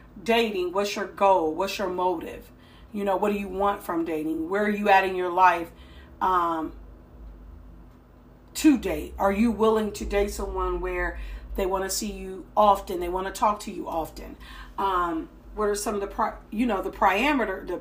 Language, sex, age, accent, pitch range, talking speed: English, female, 40-59, American, 175-210 Hz, 180 wpm